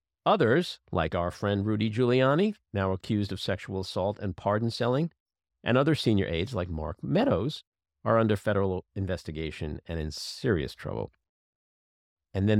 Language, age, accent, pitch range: English, 50-69, American, 85-120 Hz